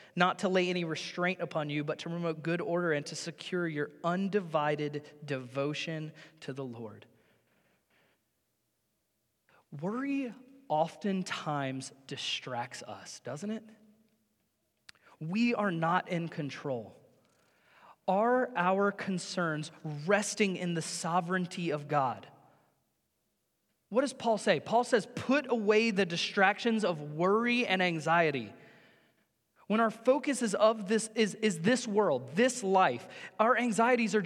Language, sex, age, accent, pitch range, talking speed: English, male, 20-39, American, 165-235 Hz, 125 wpm